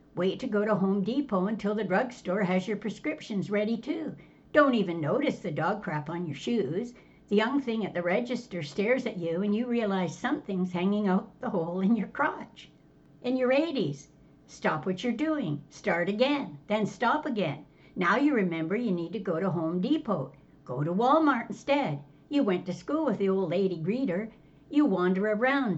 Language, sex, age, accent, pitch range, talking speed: English, female, 60-79, American, 170-245 Hz, 190 wpm